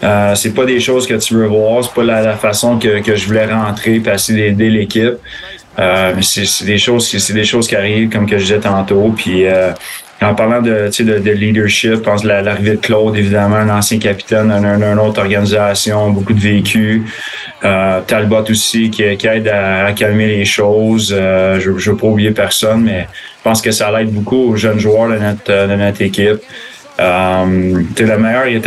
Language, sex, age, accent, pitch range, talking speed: French, male, 20-39, Canadian, 100-110 Hz, 215 wpm